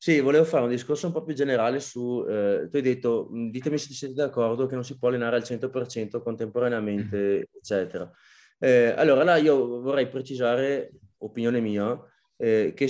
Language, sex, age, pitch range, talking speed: Italian, male, 20-39, 110-135 Hz, 165 wpm